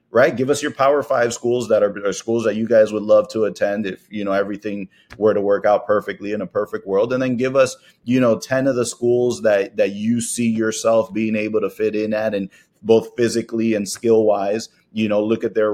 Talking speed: 240 wpm